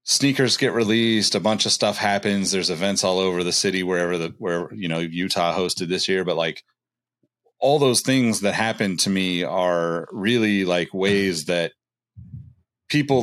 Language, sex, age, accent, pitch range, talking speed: English, male, 30-49, American, 90-115 Hz, 170 wpm